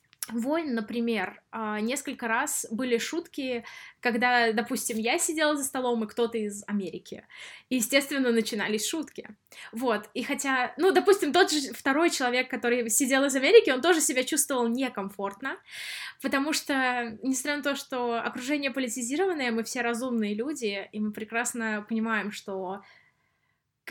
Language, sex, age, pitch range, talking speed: Russian, female, 20-39, 215-270 Hz, 140 wpm